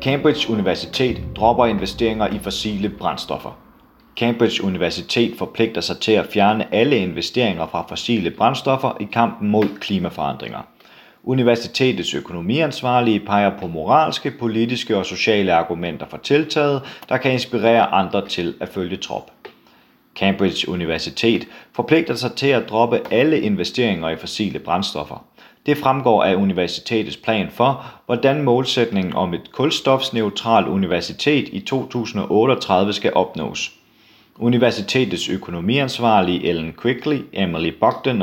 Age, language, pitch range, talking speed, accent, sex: 30-49, Danish, 100-130 Hz, 120 wpm, native, male